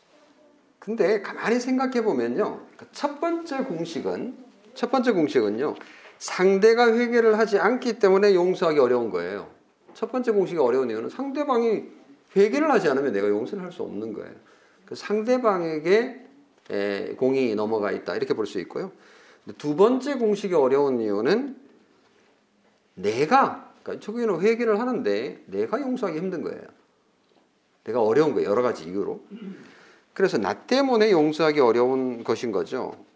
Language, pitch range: Korean, 160-250 Hz